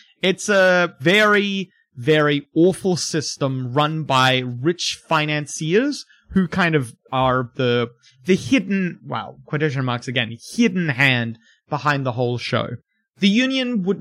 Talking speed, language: 130 wpm, English